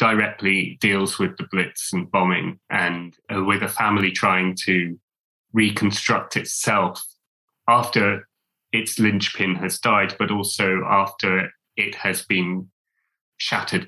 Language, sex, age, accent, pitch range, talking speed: English, male, 20-39, British, 95-110 Hz, 120 wpm